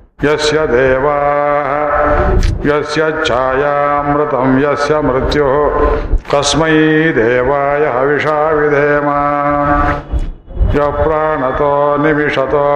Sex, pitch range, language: male, 145-150 Hz, Kannada